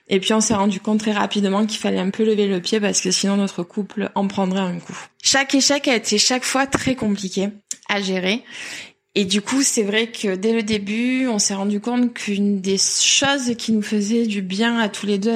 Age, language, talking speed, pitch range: 20-39, French, 230 wpm, 200-240 Hz